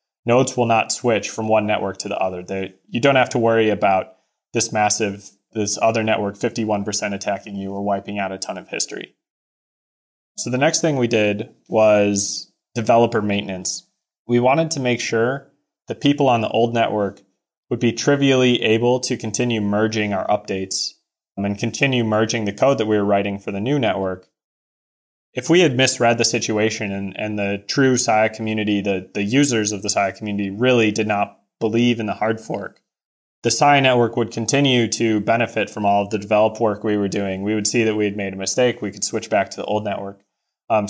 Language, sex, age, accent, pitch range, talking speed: English, male, 20-39, American, 100-120 Hz, 195 wpm